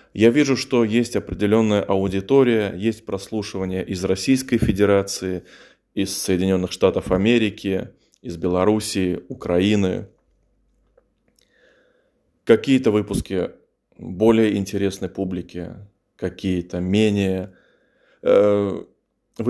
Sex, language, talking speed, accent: male, Russian, 80 wpm, native